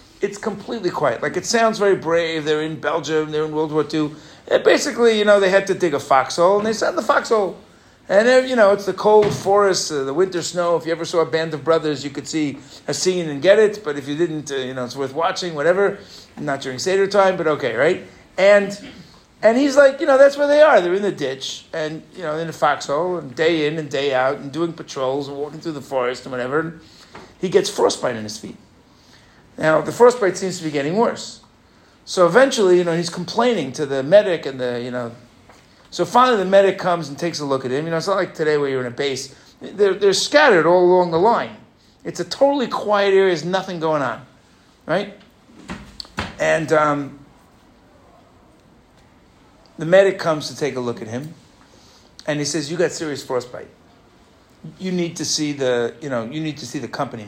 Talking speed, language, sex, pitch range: 220 wpm, English, male, 145-195 Hz